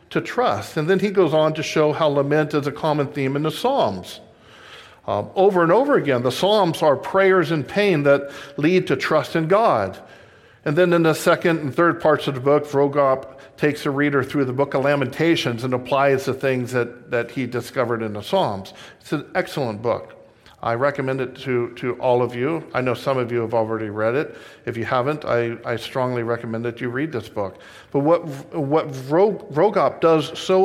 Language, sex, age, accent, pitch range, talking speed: English, male, 50-69, American, 130-170 Hz, 205 wpm